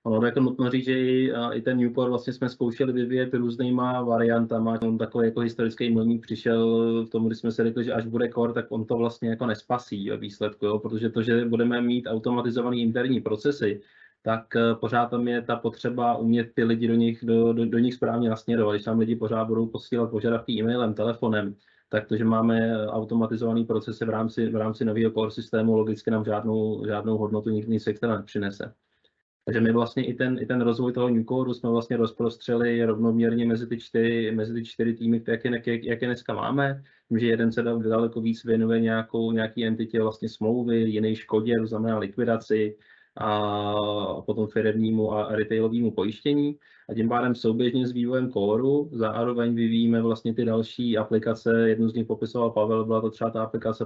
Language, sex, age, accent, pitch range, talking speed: Czech, male, 20-39, native, 110-120 Hz, 185 wpm